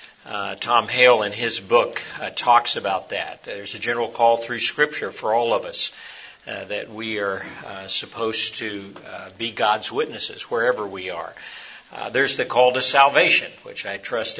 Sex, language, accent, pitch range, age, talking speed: male, English, American, 105-130 Hz, 50-69, 180 wpm